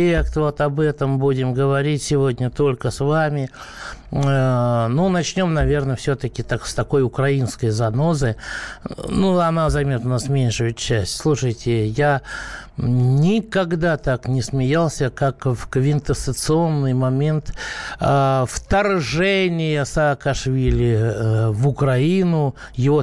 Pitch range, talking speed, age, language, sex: 125-160 Hz, 105 wpm, 60-79, Russian, male